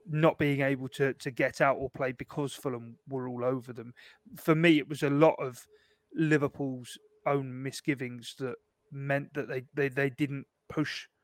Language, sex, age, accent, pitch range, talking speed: English, male, 30-49, British, 125-140 Hz, 175 wpm